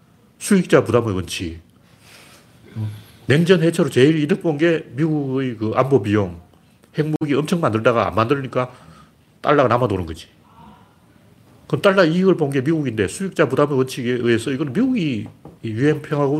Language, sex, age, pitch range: Korean, male, 40-59, 105-150 Hz